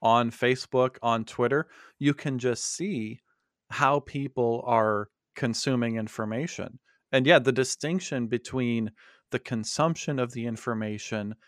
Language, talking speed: English, 120 wpm